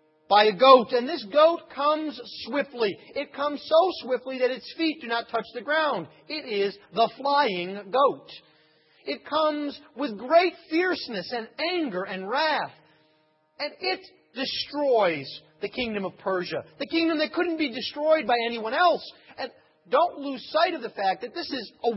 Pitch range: 195-310 Hz